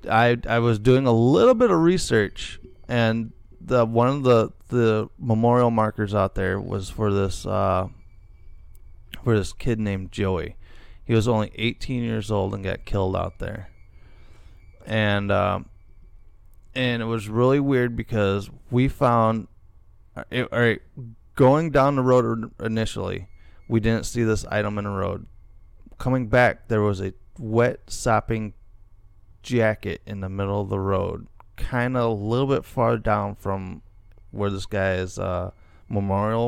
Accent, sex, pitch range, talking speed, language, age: American, male, 95-115 Hz, 150 wpm, English, 30-49